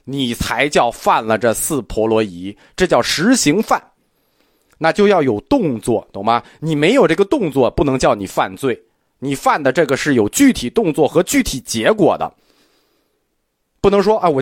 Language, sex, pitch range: Chinese, male, 130-220 Hz